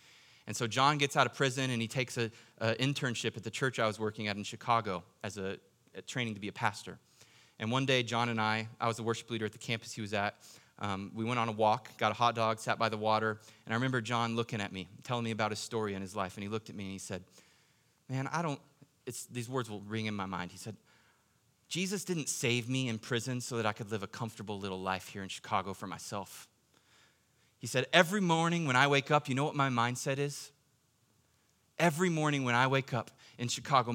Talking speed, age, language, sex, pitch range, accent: 245 wpm, 30-49, English, male, 115-165 Hz, American